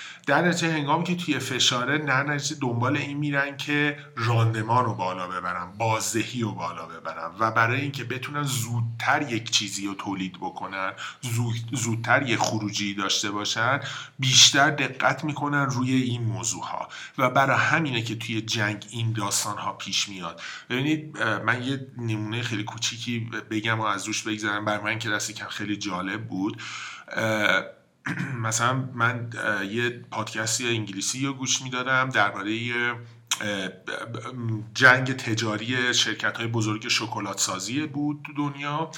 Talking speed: 135 wpm